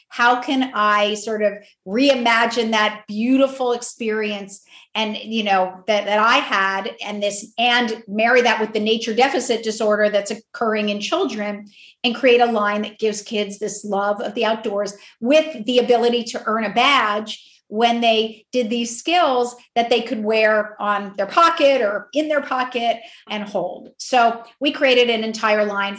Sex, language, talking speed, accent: female, English, 170 wpm, American